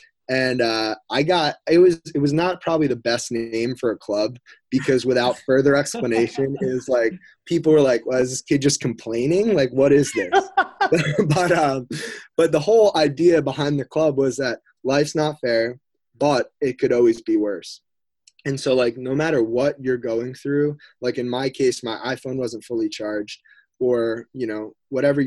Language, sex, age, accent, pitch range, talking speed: English, male, 20-39, American, 115-145 Hz, 185 wpm